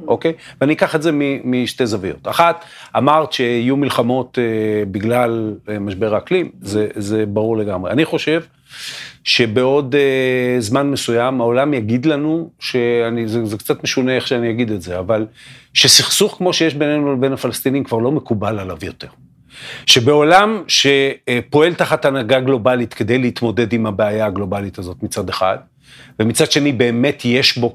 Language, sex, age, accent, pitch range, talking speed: Hebrew, male, 40-59, native, 115-150 Hz, 145 wpm